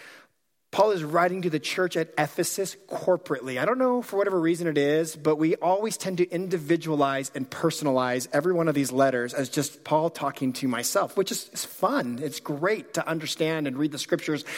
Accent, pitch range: American, 150-195 Hz